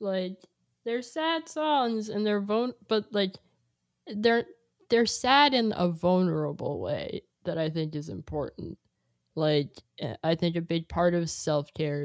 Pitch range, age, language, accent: 145-170 Hz, 10-29, English, American